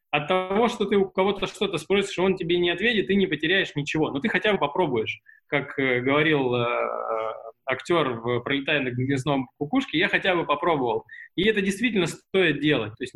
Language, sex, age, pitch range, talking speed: Russian, male, 20-39, 145-195 Hz, 185 wpm